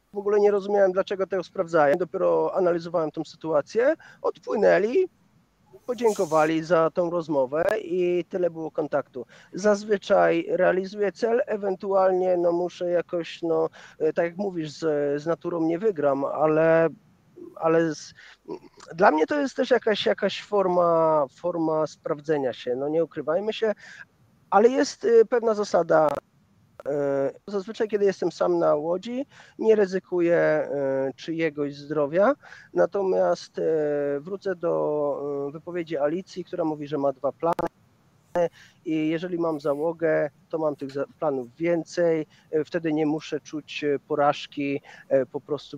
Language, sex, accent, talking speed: Polish, male, native, 125 wpm